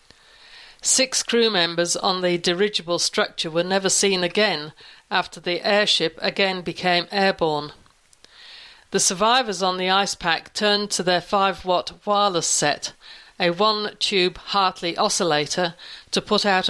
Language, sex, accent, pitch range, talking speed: English, female, British, 175-200 Hz, 130 wpm